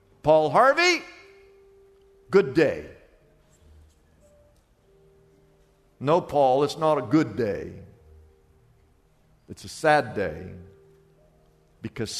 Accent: American